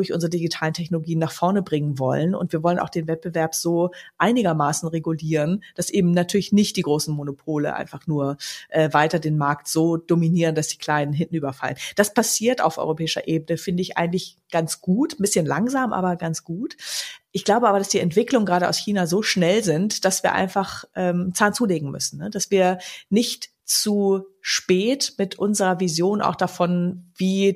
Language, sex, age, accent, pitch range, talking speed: German, female, 30-49, German, 155-185 Hz, 180 wpm